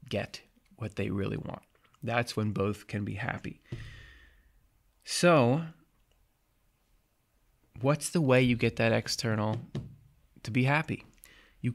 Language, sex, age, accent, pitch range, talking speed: English, male, 20-39, American, 110-135 Hz, 115 wpm